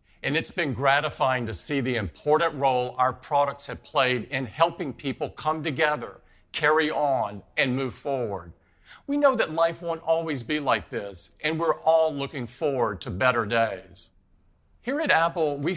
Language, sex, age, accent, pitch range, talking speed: English, male, 50-69, American, 120-165 Hz, 170 wpm